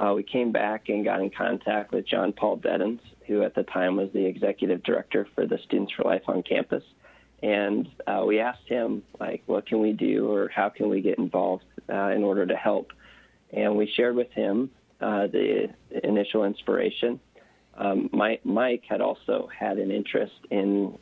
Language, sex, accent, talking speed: English, male, American, 185 wpm